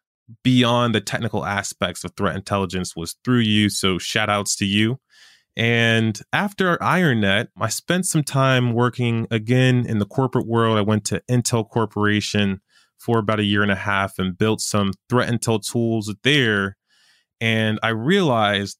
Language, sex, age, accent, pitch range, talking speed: English, male, 20-39, American, 100-125 Hz, 160 wpm